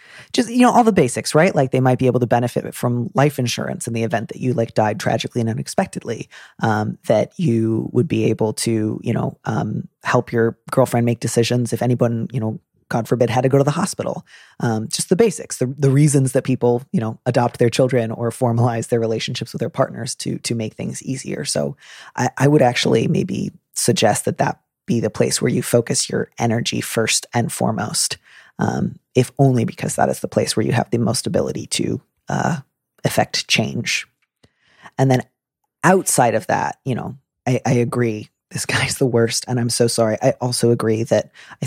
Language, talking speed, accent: English, 200 wpm, American